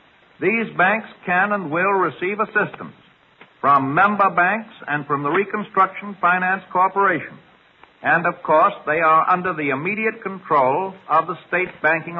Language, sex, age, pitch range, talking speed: English, male, 60-79, 155-200 Hz, 145 wpm